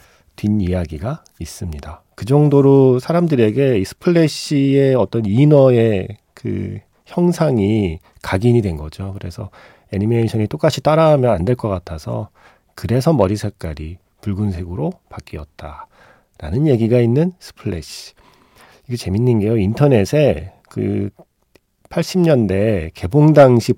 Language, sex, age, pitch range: Korean, male, 40-59, 95-145 Hz